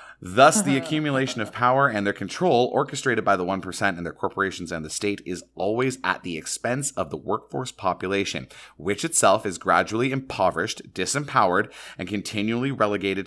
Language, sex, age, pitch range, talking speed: English, male, 30-49, 90-125 Hz, 165 wpm